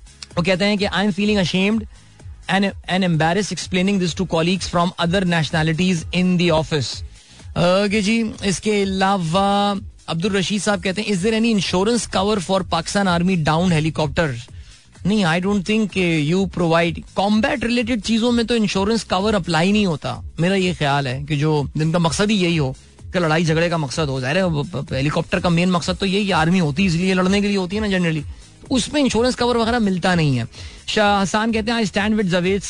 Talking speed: 130 wpm